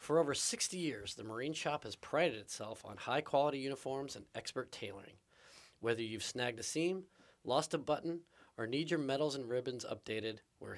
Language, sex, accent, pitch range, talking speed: English, male, American, 115-150 Hz, 180 wpm